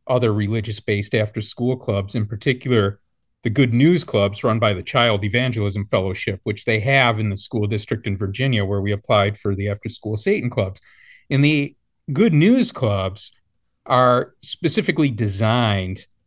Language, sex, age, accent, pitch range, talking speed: English, male, 40-59, American, 105-130 Hz, 150 wpm